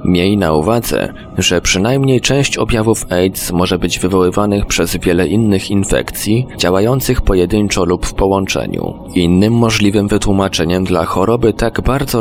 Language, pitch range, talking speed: Polish, 95-110 Hz, 135 wpm